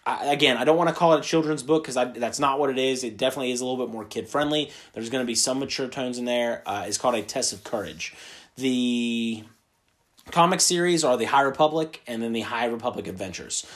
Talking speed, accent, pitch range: 230 wpm, American, 115-145 Hz